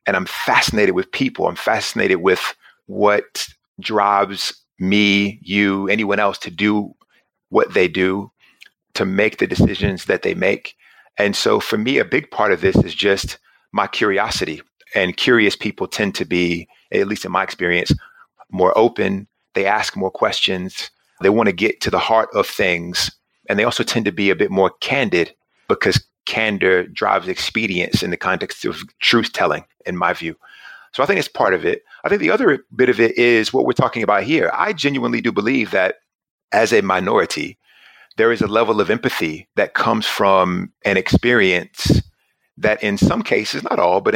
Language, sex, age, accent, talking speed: English, male, 30-49, American, 180 wpm